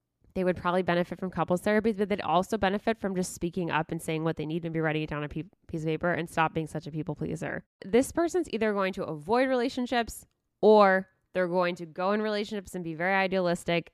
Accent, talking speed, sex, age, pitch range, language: American, 230 wpm, female, 10-29, 155-200 Hz, English